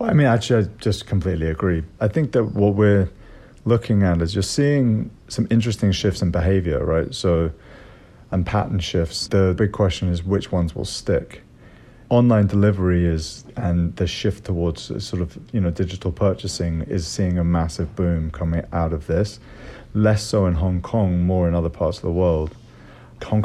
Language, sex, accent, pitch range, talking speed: English, male, British, 90-105 Hz, 180 wpm